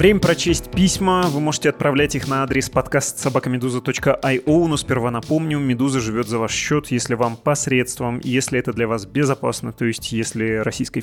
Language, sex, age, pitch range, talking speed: Russian, male, 20-39, 115-135 Hz, 175 wpm